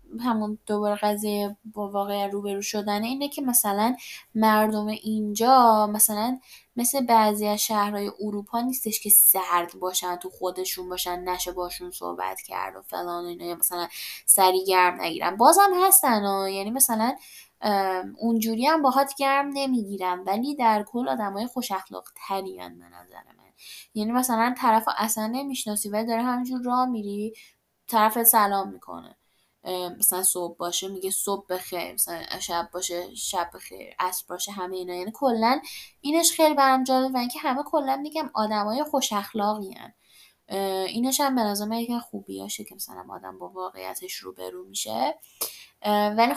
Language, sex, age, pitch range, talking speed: Persian, female, 10-29, 185-235 Hz, 140 wpm